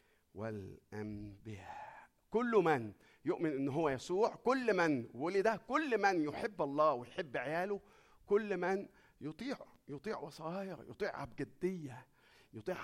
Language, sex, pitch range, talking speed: Arabic, male, 145-205 Hz, 110 wpm